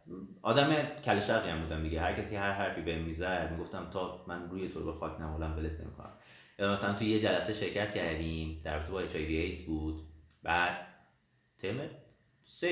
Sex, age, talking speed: male, 30-49, 165 wpm